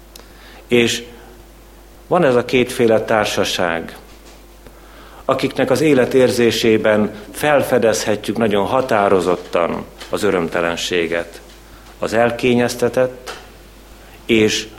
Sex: male